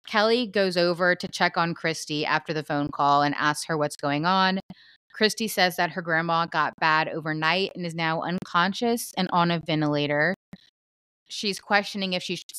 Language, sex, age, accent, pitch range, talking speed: English, female, 20-39, American, 165-205 Hz, 180 wpm